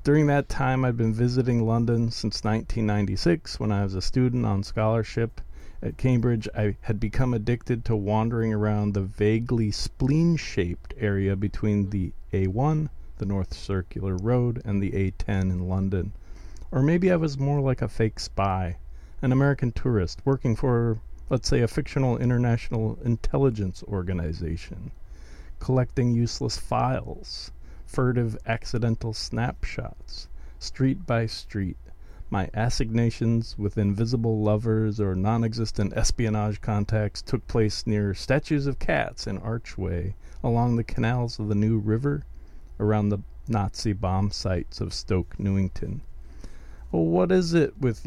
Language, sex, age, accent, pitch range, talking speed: English, male, 40-59, American, 95-120 Hz, 135 wpm